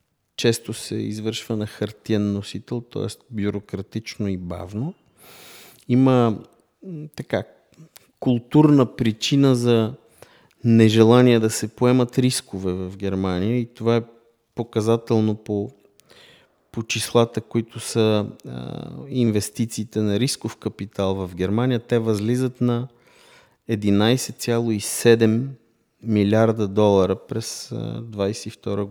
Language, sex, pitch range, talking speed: Bulgarian, male, 105-120 Hz, 95 wpm